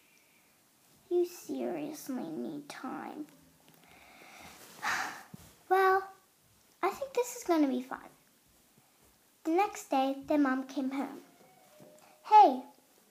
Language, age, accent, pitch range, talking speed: English, 10-29, American, 265-370 Hz, 90 wpm